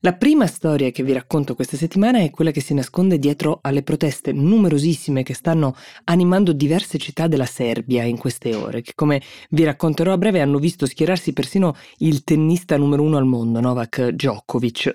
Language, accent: Italian, native